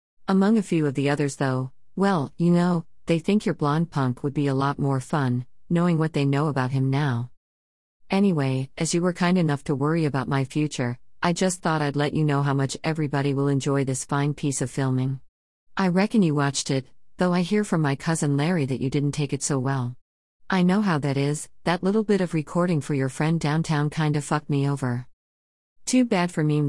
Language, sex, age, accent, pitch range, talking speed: English, female, 40-59, American, 130-175 Hz, 220 wpm